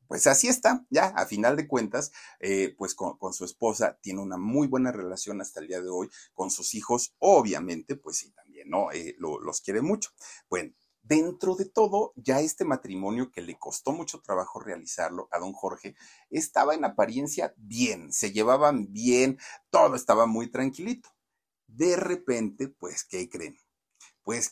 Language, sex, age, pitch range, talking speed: Spanish, male, 50-69, 105-160 Hz, 170 wpm